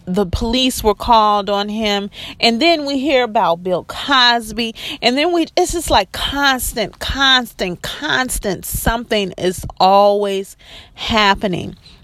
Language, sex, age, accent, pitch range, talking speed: English, female, 30-49, American, 175-230 Hz, 130 wpm